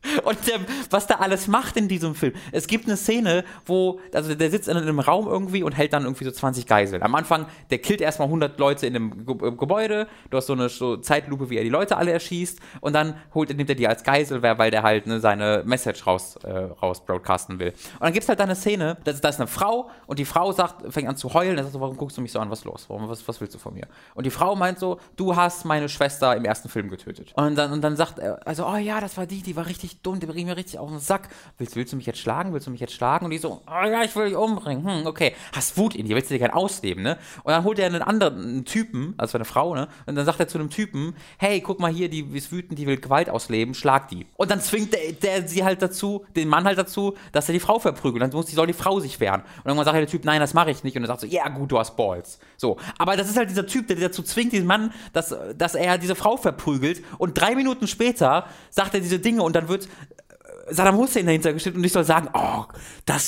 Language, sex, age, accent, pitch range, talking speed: German, male, 20-39, German, 135-195 Hz, 280 wpm